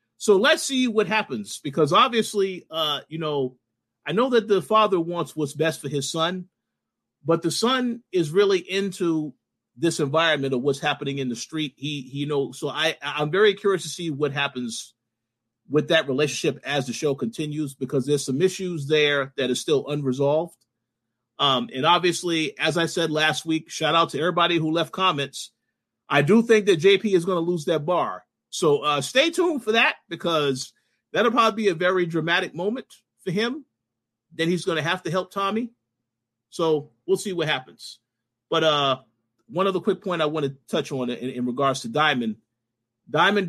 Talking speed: 185 wpm